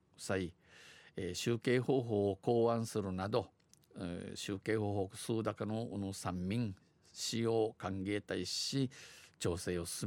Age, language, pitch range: 50-69, Japanese, 100-130 Hz